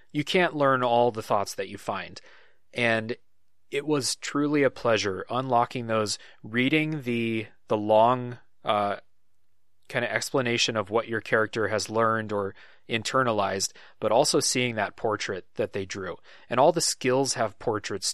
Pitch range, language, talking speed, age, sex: 105-135 Hz, English, 155 wpm, 30-49, male